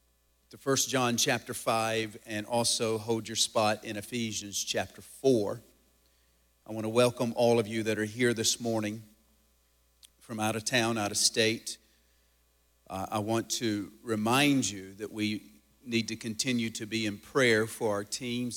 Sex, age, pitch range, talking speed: male, 50-69, 100-115 Hz, 165 wpm